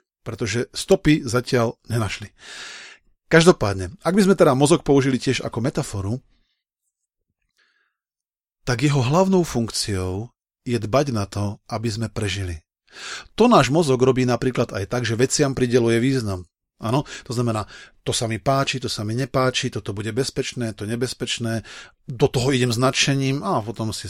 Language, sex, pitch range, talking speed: Slovak, male, 115-150 Hz, 145 wpm